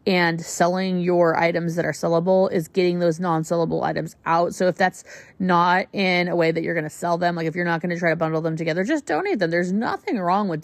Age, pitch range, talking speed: 30-49, 165-205 Hz, 250 wpm